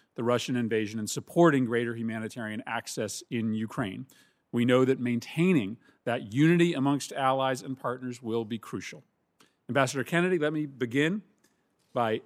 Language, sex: English, male